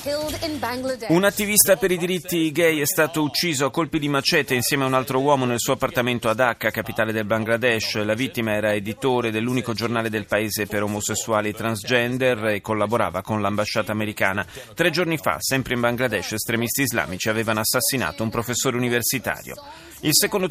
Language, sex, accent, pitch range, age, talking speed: Italian, male, native, 110-140 Hz, 30-49, 170 wpm